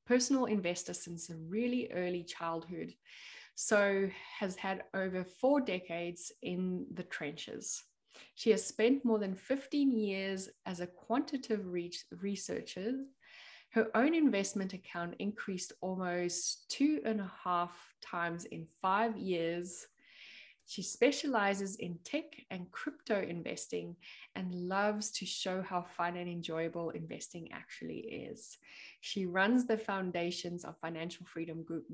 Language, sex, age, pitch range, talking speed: English, female, 20-39, 175-225 Hz, 130 wpm